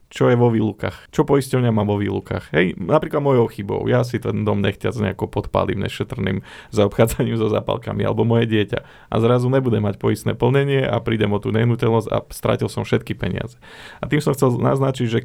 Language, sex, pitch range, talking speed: Slovak, male, 110-120 Hz, 195 wpm